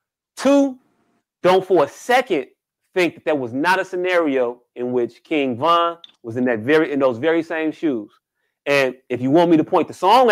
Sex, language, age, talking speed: male, English, 30-49, 200 wpm